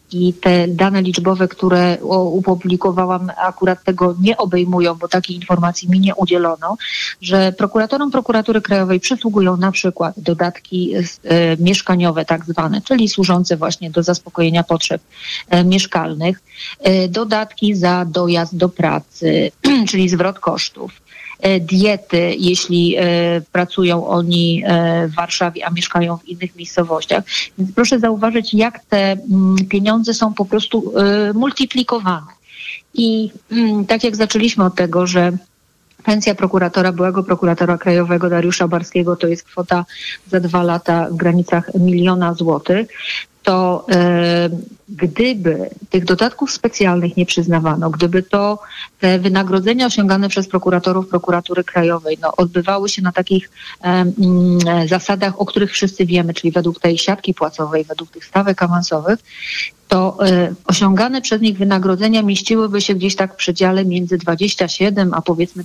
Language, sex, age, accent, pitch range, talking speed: Polish, female, 30-49, native, 175-200 Hz, 130 wpm